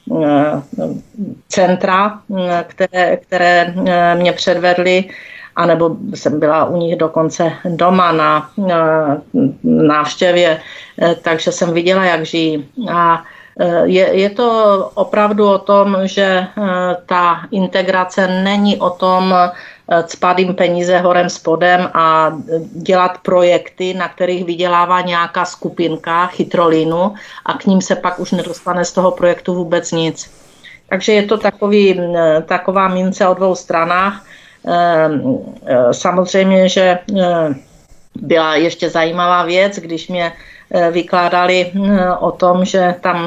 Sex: female